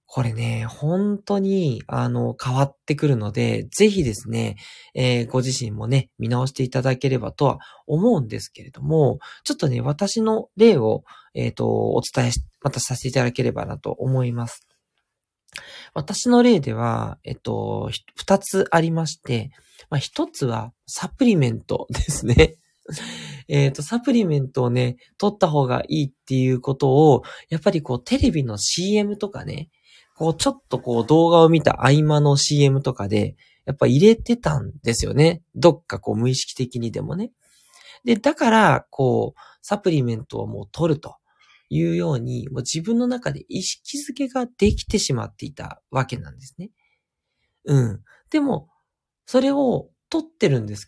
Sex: male